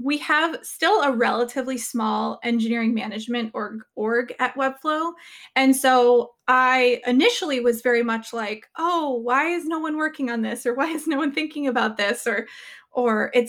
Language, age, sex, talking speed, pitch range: English, 20-39, female, 175 wpm, 225-270 Hz